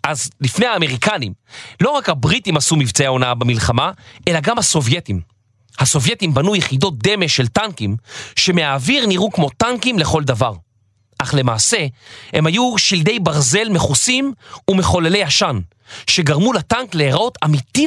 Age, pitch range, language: 30-49, 115-190 Hz, Hebrew